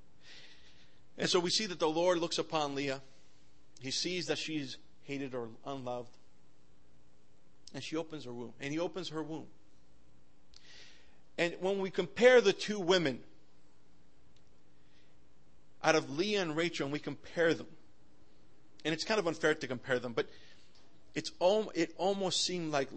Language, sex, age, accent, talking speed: Italian, male, 40-59, American, 150 wpm